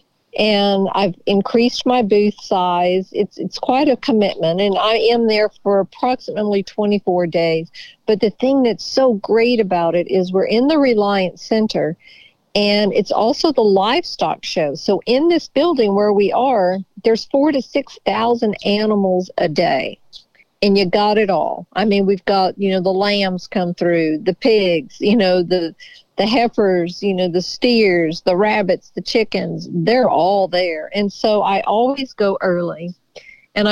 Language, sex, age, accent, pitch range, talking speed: English, female, 50-69, American, 185-225 Hz, 165 wpm